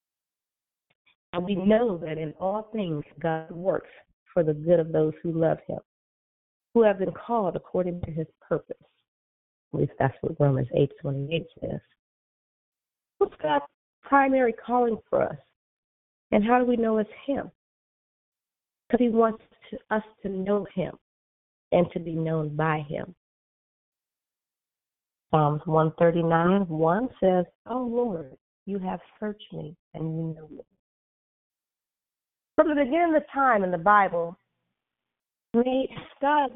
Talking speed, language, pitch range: 140 wpm, English, 165-230 Hz